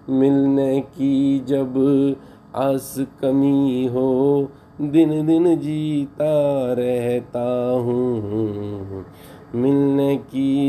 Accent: native